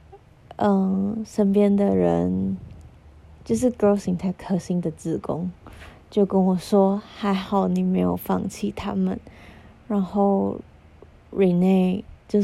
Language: Chinese